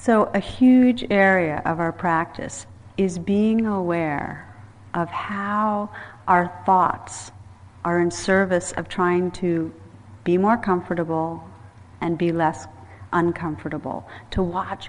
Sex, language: female, English